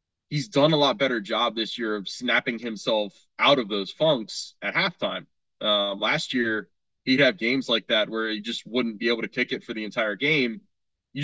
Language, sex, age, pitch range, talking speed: English, male, 20-39, 110-130 Hz, 210 wpm